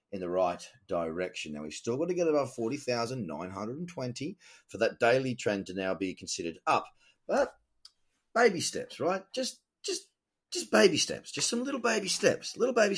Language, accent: English, Australian